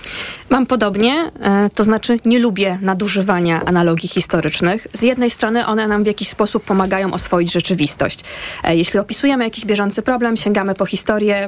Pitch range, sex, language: 185-225 Hz, female, Polish